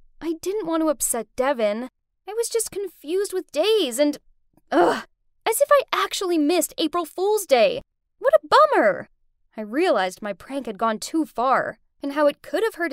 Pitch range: 225-360 Hz